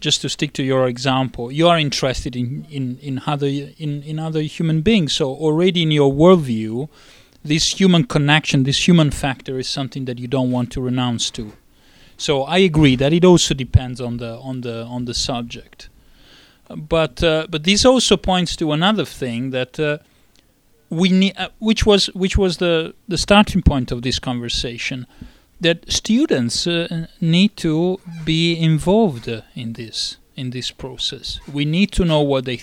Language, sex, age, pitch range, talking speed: English, male, 30-49, 130-170 Hz, 175 wpm